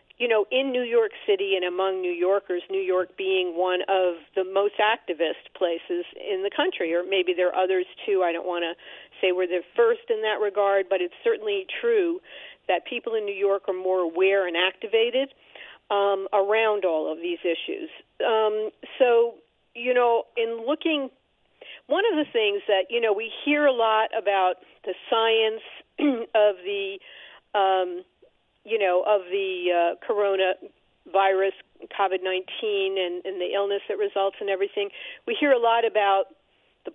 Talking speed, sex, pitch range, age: 165 wpm, female, 190-275 Hz, 50-69